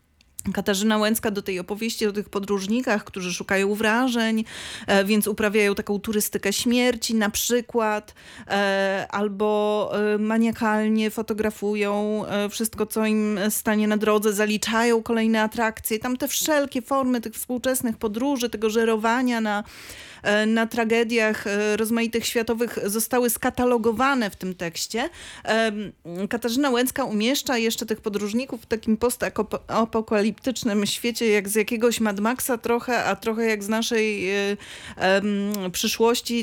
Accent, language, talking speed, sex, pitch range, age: native, Polish, 115 wpm, female, 205-230 Hz, 30-49